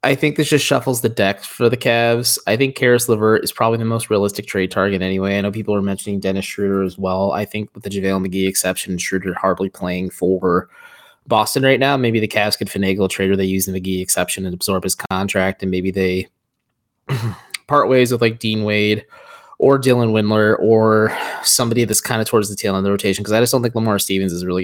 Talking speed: 230 wpm